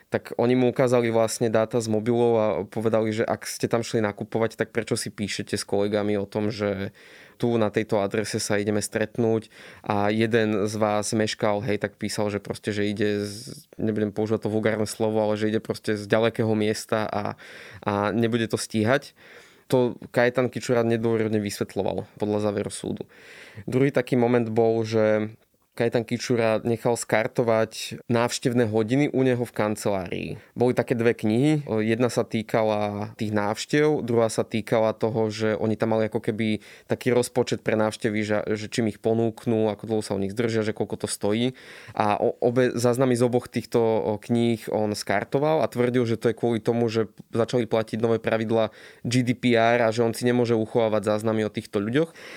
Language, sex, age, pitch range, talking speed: Slovak, male, 20-39, 110-120 Hz, 175 wpm